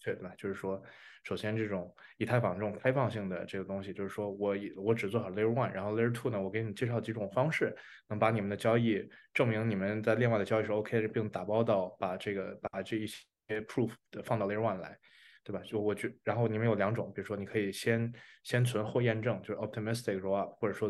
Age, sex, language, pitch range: 20-39, male, Chinese, 100-125 Hz